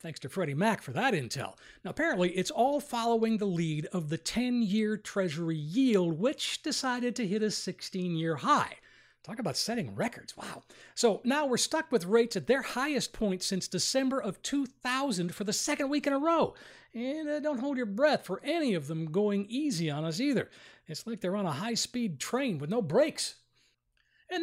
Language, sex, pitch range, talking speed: English, male, 170-255 Hz, 190 wpm